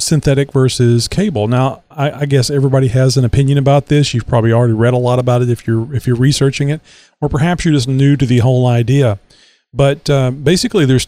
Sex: male